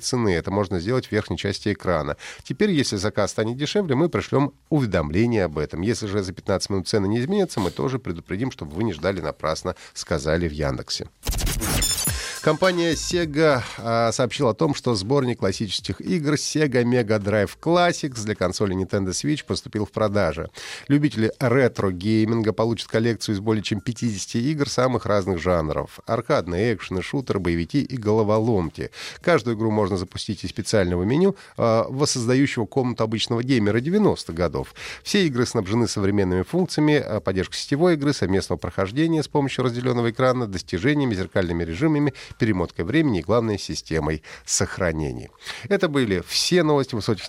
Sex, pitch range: male, 95-135 Hz